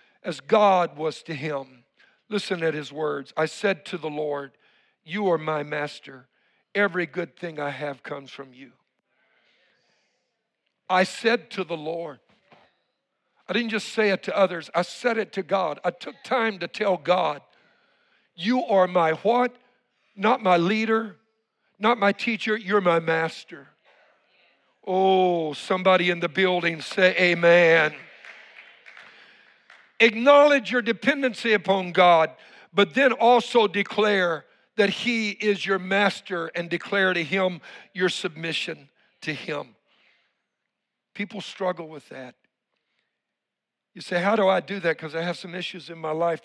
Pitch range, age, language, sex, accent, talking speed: 165-215 Hz, 60-79, English, male, American, 140 wpm